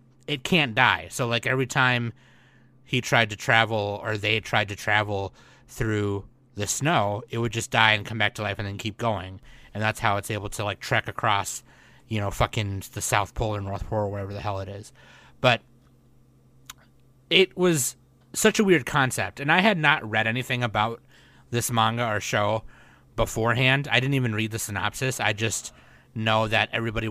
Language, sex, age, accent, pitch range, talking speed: English, male, 30-49, American, 105-130 Hz, 190 wpm